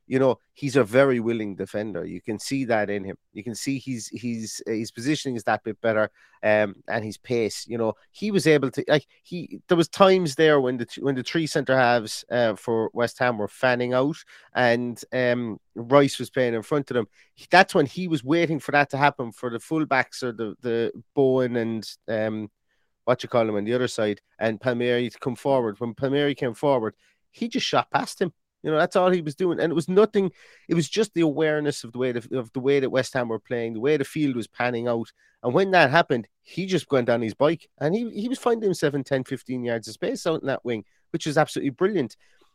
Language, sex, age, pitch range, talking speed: English, male, 30-49, 120-160 Hz, 235 wpm